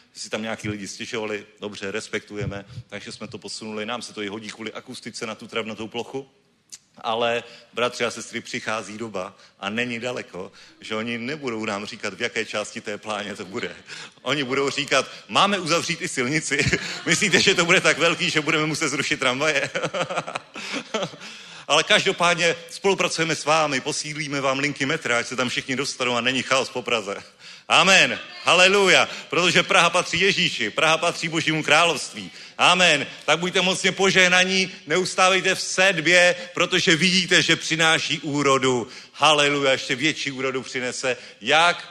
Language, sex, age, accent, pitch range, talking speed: Czech, male, 40-59, native, 125-175 Hz, 155 wpm